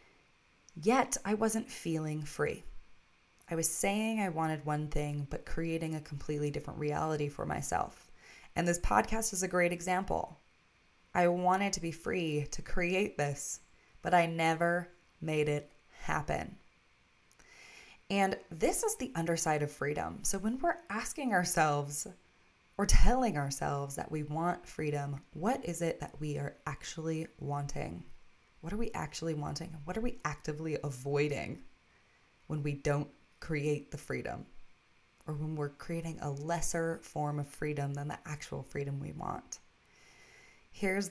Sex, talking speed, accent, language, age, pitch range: female, 145 wpm, American, English, 20-39, 145-180 Hz